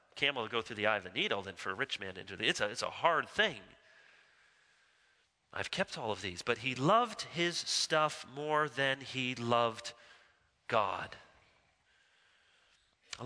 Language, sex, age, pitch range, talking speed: English, male, 30-49, 115-155 Hz, 165 wpm